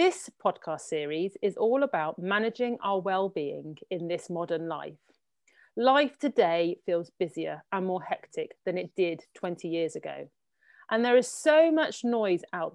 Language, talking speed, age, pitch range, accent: English, 155 wpm, 40-59, 170-235 Hz, British